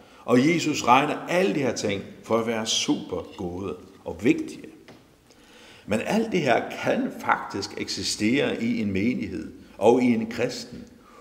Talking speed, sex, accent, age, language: 150 wpm, male, native, 60-79, Danish